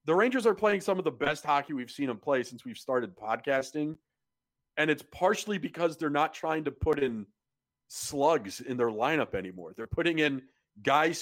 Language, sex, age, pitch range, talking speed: English, male, 40-59, 135-175 Hz, 195 wpm